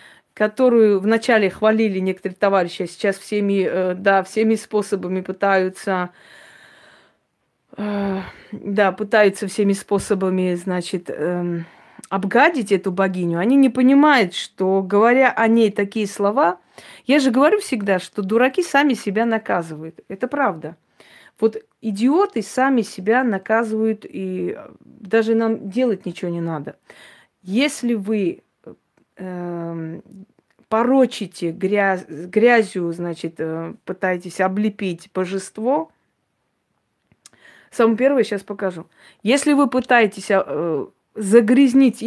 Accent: native